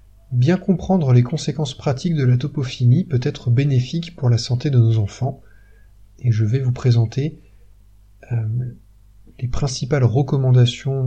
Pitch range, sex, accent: 105-130 Hz, male, French